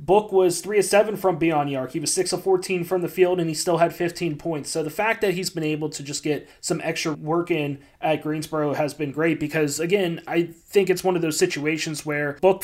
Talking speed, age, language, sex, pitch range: 245 wpm, 20-39, English, male, 150-175 Hz